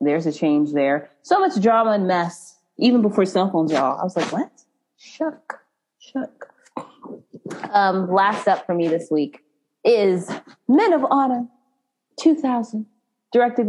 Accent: American